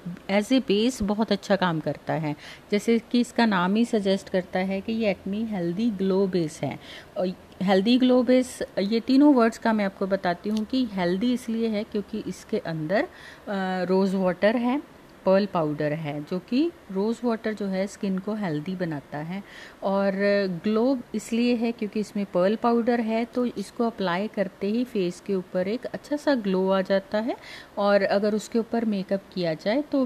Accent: native